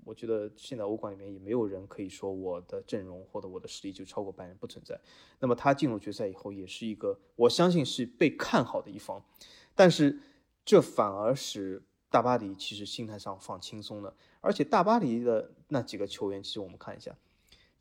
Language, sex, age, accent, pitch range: Chinese, male, 20-39, native, 100-135 Hz